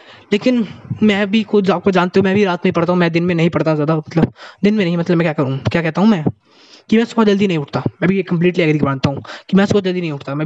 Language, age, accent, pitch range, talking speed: Hindi, 20-39, native, 160-230 Hz, 295 wpm